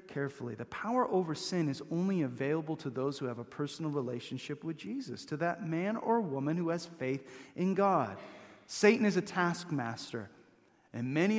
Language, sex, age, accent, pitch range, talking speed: English, male, 30-49, American, 130-185 Hz, 175 wpm